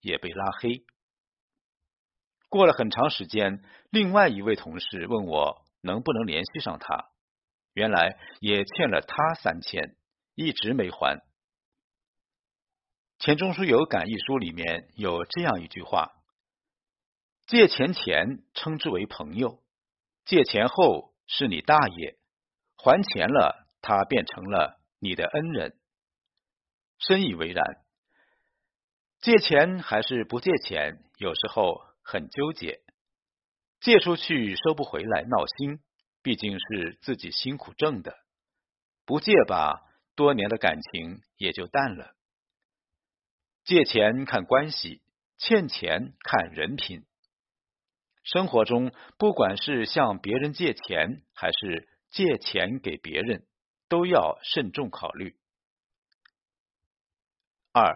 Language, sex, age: Chinese, male, 50-69